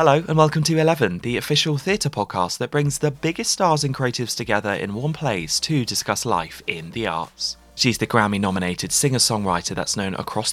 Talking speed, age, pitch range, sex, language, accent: 190 wpm, 20-39, 100-150 Hz, male, English, British